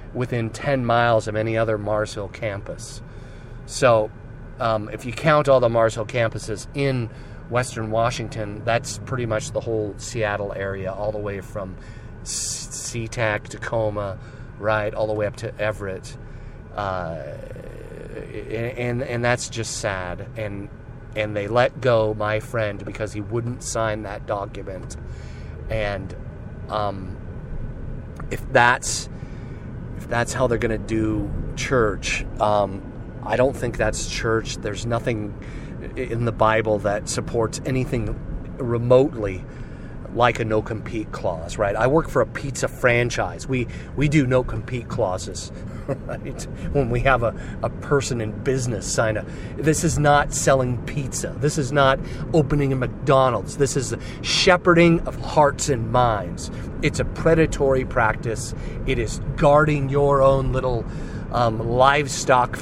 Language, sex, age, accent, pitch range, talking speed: English, male, 30-49, American, 105-130 Hz, 140 wpm